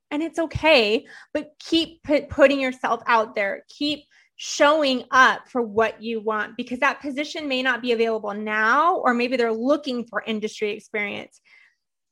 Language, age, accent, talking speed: English, 20-39, American, 160 wpm